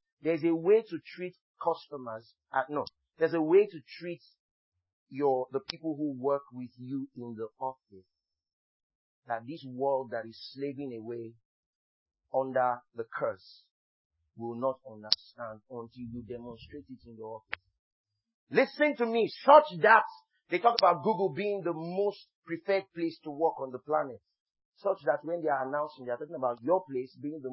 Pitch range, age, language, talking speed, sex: 115-175 Hz, 40-59, English, 165 wpm, male